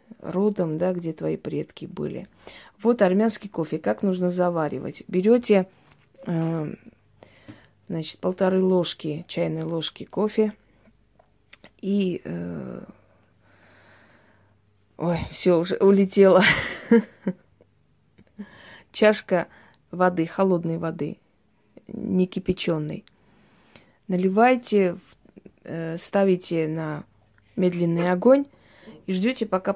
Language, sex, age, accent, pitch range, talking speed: Russian, female, 20-39, native, 160-195 Hz, 80 wpm